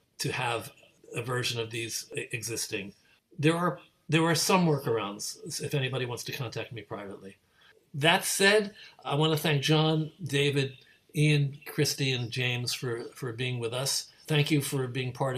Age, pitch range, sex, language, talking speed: 60-79, 120-150 Hz, male, English, 160 wpm